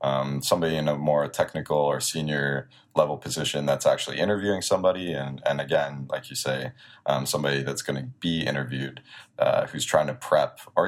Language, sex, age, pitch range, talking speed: English, male, 20-39, 70-75 Hz, 180 wpm